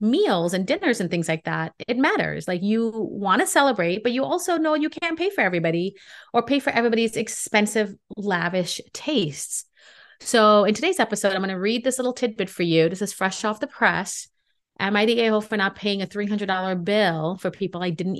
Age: 30-49